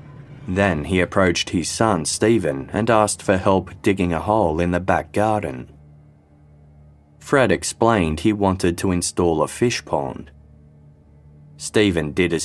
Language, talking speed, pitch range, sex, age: English, 140 wpm, 80-105 Hz, male, 30-49